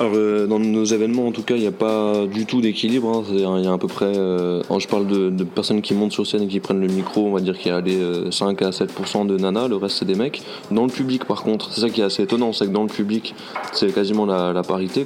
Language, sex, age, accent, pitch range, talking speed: French, male, 20-39, French, 95-105 Hz, 305 wpm